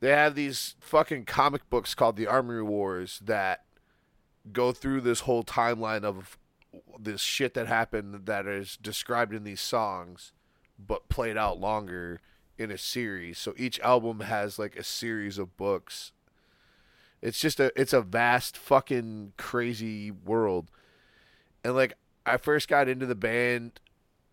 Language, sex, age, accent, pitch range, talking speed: English, male, 20-39, American, 95-115 Hz, 150 wpm